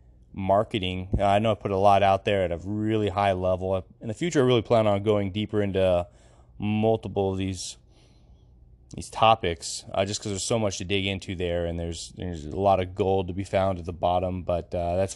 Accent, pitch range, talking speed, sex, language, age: American, 95-110 Hz, 220 wpm, male, English, 20-39